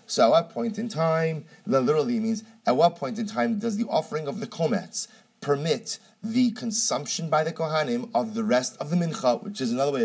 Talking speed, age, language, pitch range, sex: 215 wpm, 30-49, English, 155-225 Hz, male